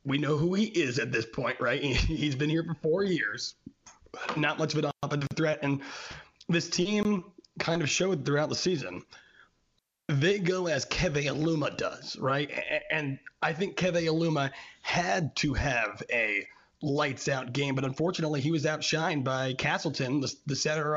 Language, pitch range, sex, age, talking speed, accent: English, 140-170 Hz, male, 30-49, 165 wpm, American